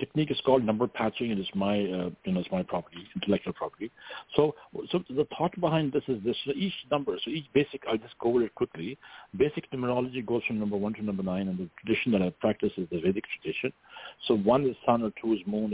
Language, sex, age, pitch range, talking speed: English, male, 60-79, 105-135 Hz, 245 wpm